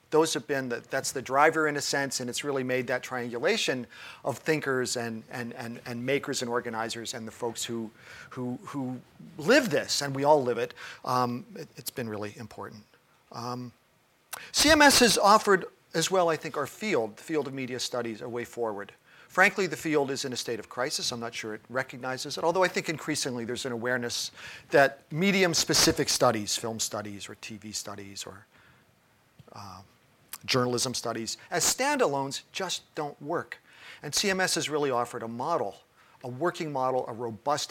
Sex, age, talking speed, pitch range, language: male, 40-59, 180 wpm, 120-160 Hz, English